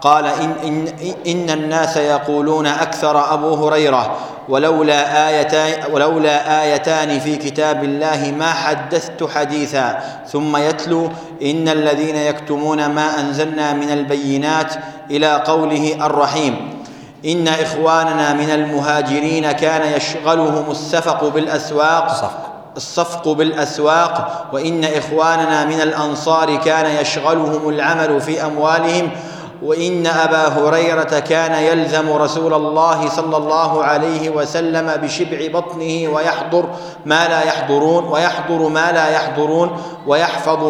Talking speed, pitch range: 105 wpm, 155-165 Hz